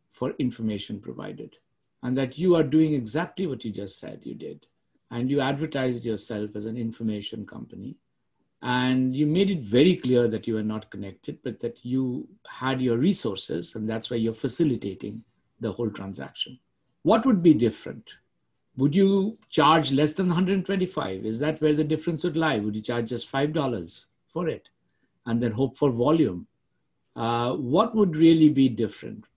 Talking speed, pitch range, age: 170 wpm, 115-160 Hz, 60-79